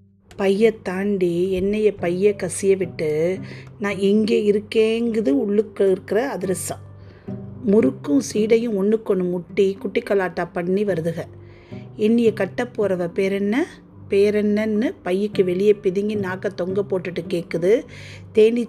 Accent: native